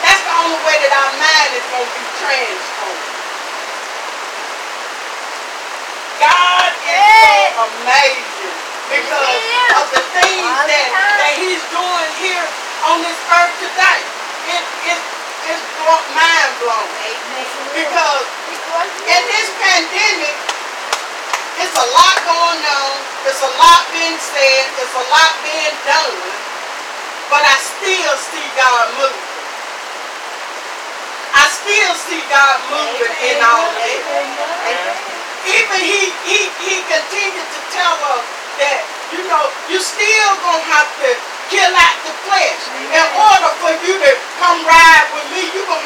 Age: 40-59